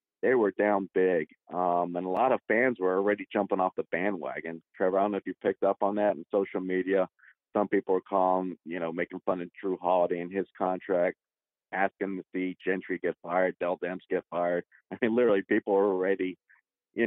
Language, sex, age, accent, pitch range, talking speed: English, male, 40-59, American, 95-105 Hz, 210 wpm